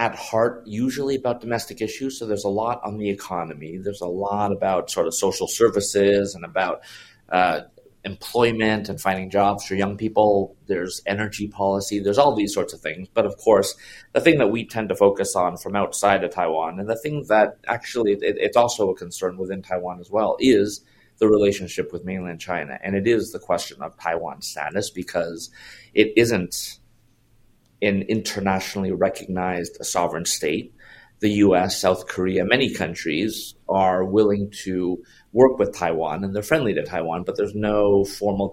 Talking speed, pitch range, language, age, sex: 175 wpm, 95-115 Hz, English, 30-49, male